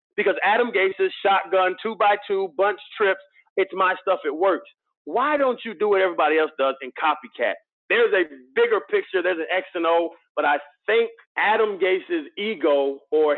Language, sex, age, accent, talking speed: English, male, 30-49, American, 175 wpm